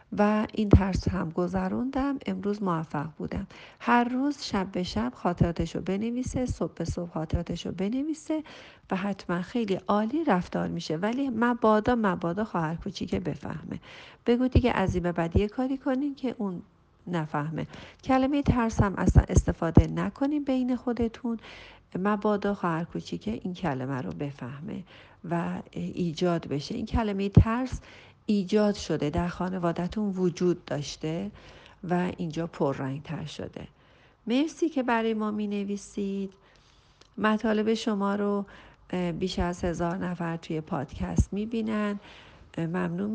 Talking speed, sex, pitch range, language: 125 wpm, female, 175-225 Hz, Persian